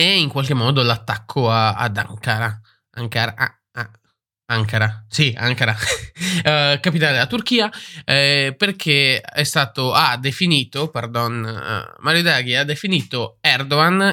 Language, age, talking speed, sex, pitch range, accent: Italian, 20-39, 130 wpm, male, 115-150 Hz, native